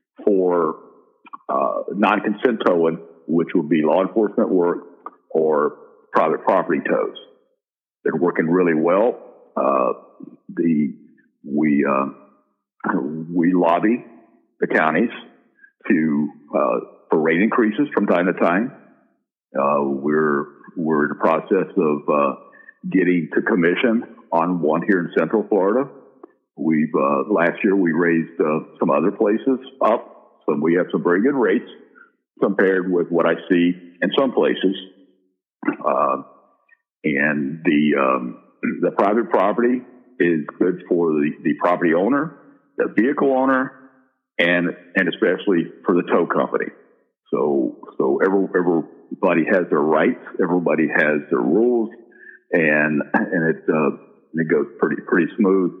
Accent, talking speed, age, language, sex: American, 130 wpm, 60-79, English, male